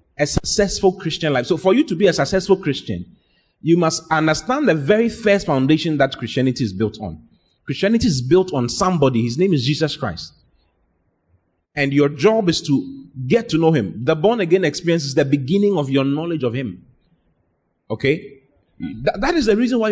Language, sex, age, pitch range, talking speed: English, male, 30-49, 130-195 Hz, 185 wpm